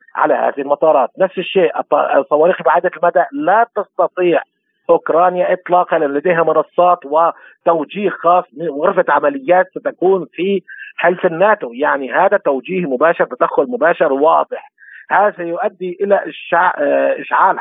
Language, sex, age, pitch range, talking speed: Arabic, male, 50-69, 150-190 Hz, 110 wpm